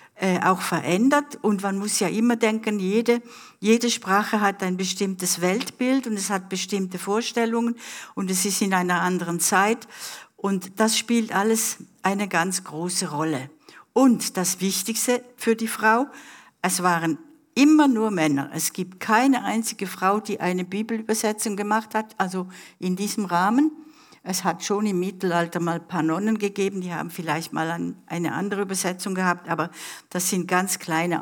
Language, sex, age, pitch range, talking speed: German, female, 60-79, 175-220 Hz, 160 wpm